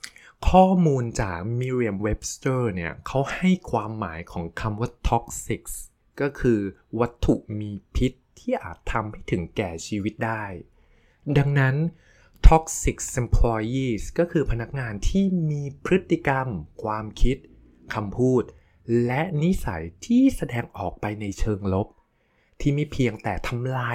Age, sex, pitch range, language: 20-39, male, 100-135 Hz, Thai